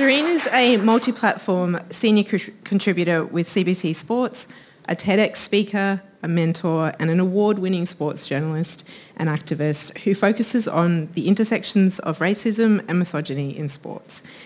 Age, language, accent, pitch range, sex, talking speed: 30-49, English, Australian, 160-210 Hz, female, 135 wpm